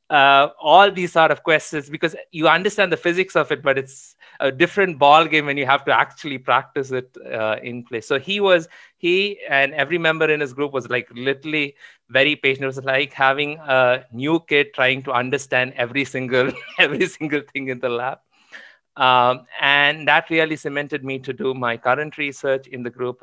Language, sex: English, male